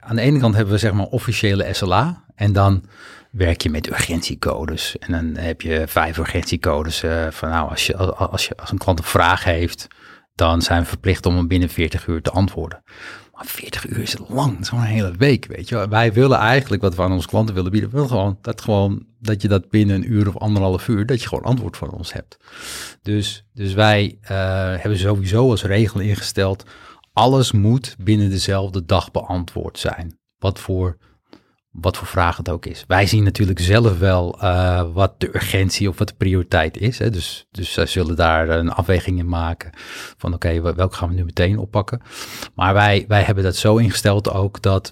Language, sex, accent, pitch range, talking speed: Dutch, male, Dutch, 90-105 Hz, 200 wpm